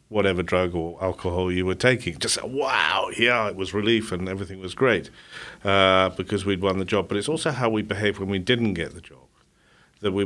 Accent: British